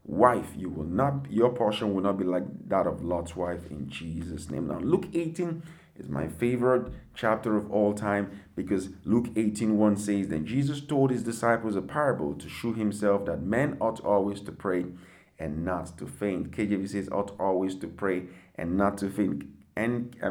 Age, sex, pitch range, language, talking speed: 50-69, male, 100-120 Hz, English, 190 wpm